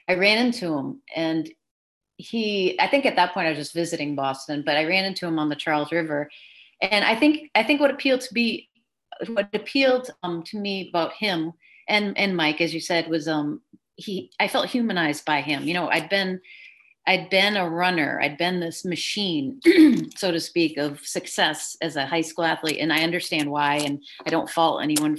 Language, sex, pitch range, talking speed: English, female, 155-195 Hz, 205 wpm